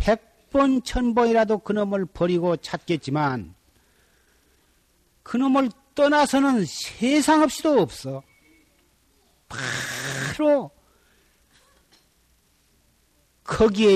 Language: Korean